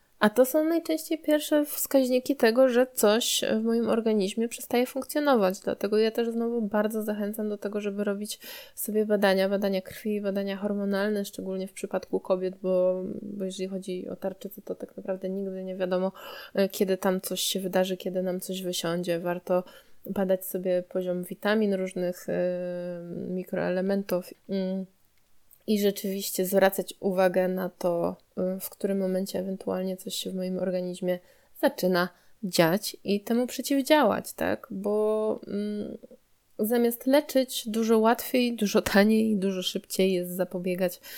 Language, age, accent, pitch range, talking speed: Polish, 20-39, native, 185-230 Hz, 140 wpm